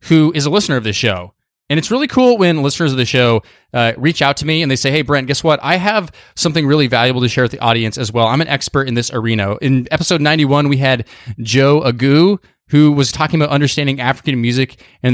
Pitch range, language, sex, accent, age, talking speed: 125-160 Hz, English, male, American, 20-39, 240 wpm